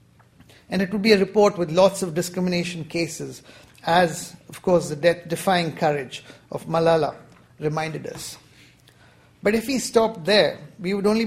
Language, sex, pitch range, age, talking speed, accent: English, male, 160-200 Hz, 50-69, 160 wpm, Indian